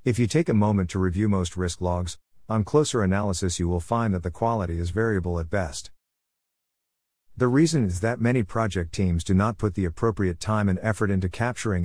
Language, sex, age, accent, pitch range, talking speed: English, male, 50-69, American, 85-110 Hz, 205 wpm